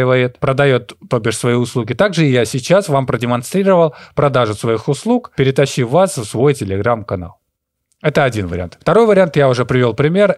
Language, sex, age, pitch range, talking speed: Russian, male, 20-39, 115-145 Hz, 155 wpm